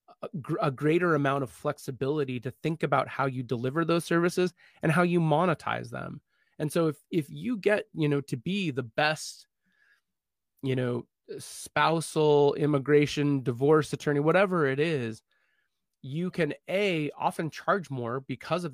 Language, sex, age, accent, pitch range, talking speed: English, male, 20-39, American, 135-170 Hz, 150 wpm